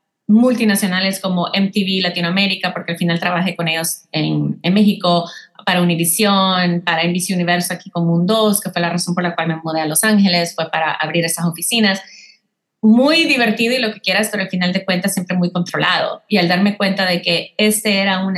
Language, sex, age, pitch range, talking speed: Spanish, female, 30-49, 170-200 Hz, 200 wpm